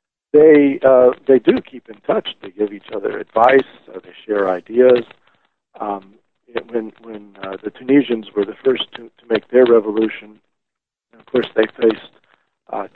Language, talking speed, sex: English, 165 wpm, male